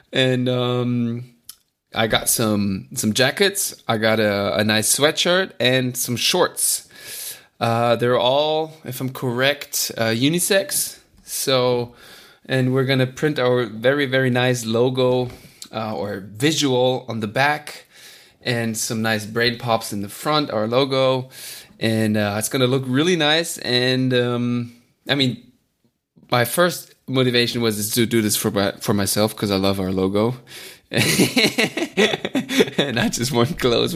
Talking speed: 145 wpm